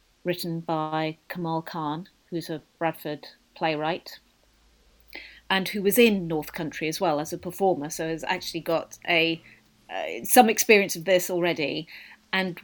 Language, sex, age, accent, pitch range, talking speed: English, female, 40-59, British, 165-200 Hz, 145 wpm